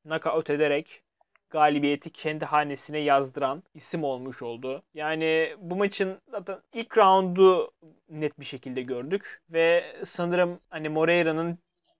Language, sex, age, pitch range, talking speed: Turkish, male, 30-49, 145-175 Hz, 115 wpm